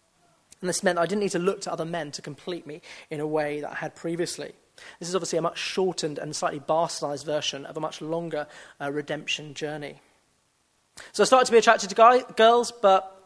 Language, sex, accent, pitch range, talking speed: English, male, British, 165-215 Hz, 215 wpm